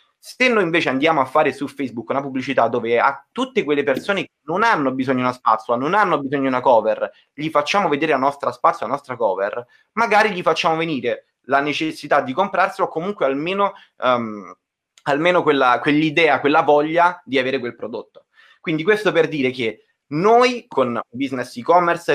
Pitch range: 125-170 Hz